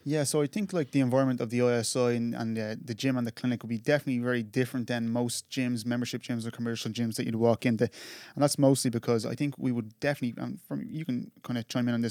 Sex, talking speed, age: male, 270 wpm, 10-29